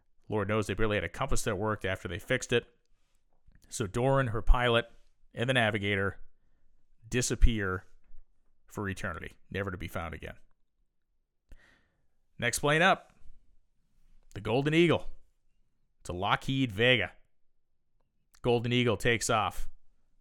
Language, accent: English, American